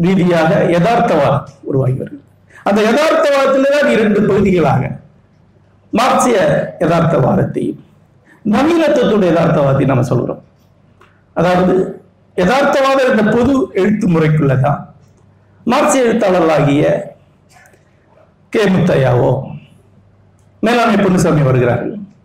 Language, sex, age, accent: Tamil, male, 60-79, native